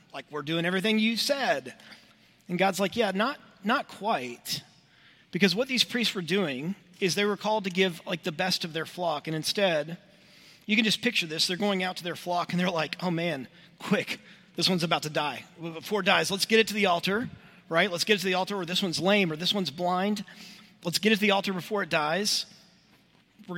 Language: English